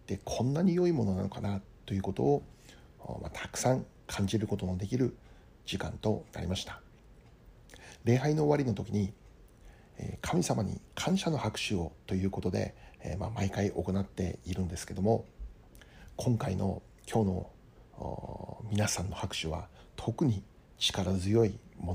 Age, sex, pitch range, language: 60-79, male, 95-115 Hz, Japanese